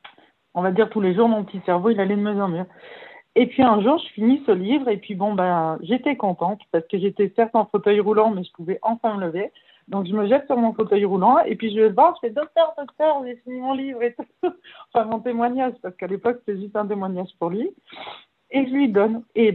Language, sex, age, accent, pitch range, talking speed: French, female, 50-69, French, 195-255 Hz, 250 wpm